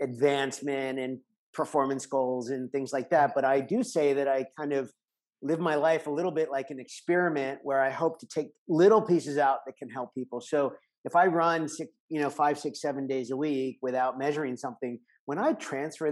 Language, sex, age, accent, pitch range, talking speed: English, male, 50-69, American, 125-150 Hz, 205 wpm